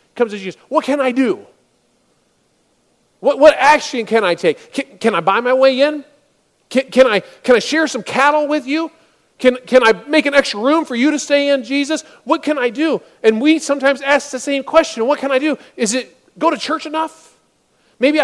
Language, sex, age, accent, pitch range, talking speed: English, male, 40-59, American, 225-300 Hz, 205 wpm